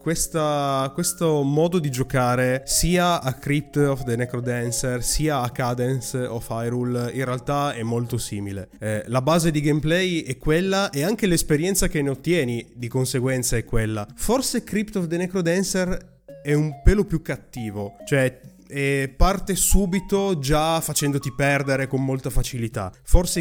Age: 20-39